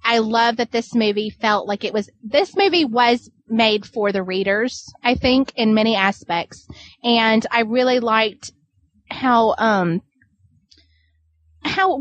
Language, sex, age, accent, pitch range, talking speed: English, female, 20-39, American, 210-260 Hz, 140 wpm